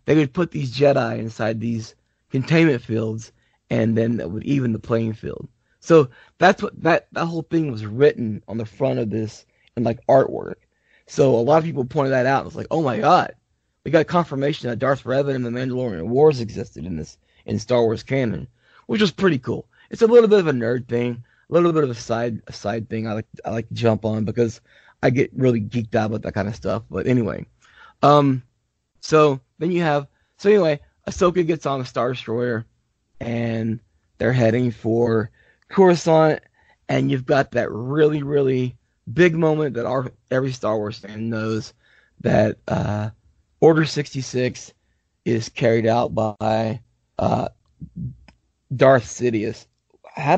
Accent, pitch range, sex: American, 110-145 Hz, male